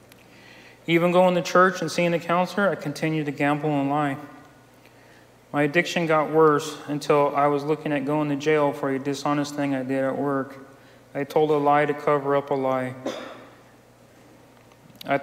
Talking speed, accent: 175 wpm, American